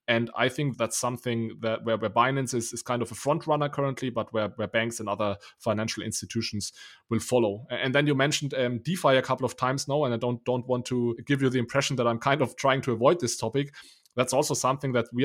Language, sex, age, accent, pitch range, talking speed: English, male, 20-39, German, 120-140 Hz, 245 wpm